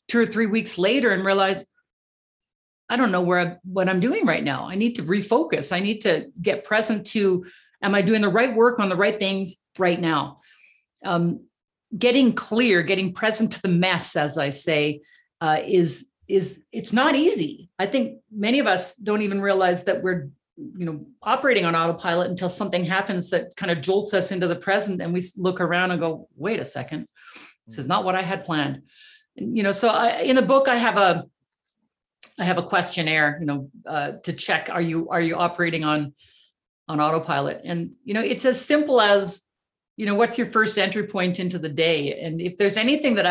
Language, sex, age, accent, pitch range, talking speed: English, female, 40-59, American, 175-220 Hz, 205 wpm